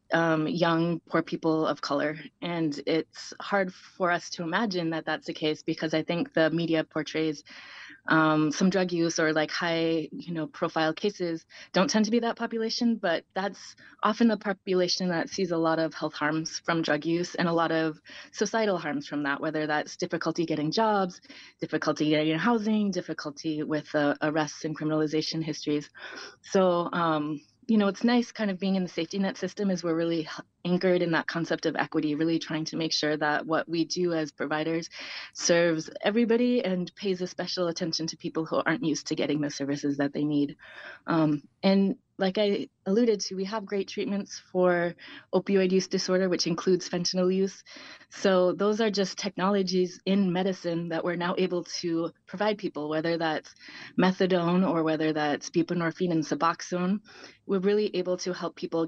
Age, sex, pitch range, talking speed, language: 20-39, female, 155-190 Hz, 180 wpm, English